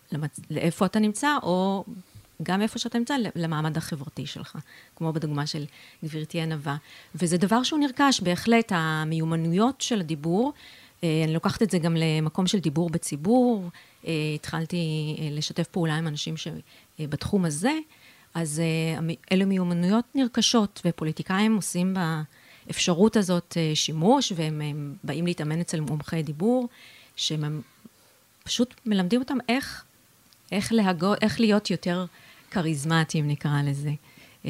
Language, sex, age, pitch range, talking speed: Hebrew, female, 30-49, 150-190 Hz, 120 wpm